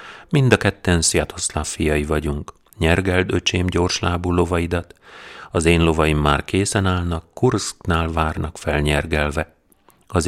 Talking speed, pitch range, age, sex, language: 115 wpm, 80-95 Hz, 40-59, male, Hungarian